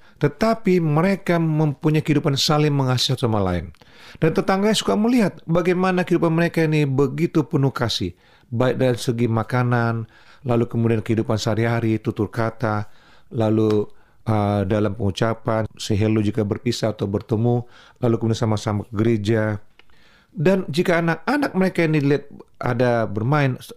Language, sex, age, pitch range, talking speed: Indonesian, male, 40-59, 110-155 Hz, 130 wpm